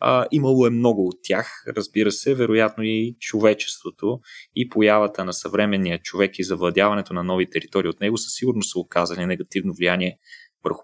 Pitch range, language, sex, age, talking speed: 100-140 Hz, Bulgarian, male, 30-49, 165 wpm